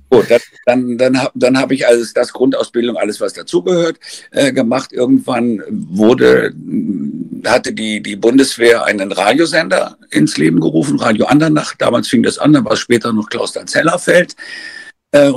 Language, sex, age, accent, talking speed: German, male, 50-69, German, 155 wpm